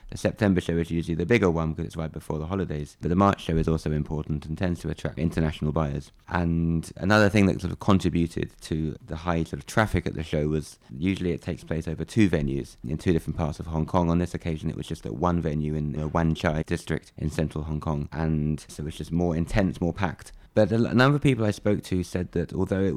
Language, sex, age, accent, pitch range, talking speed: English, male, 20-39, British, 80-95 Hz, 250 wpm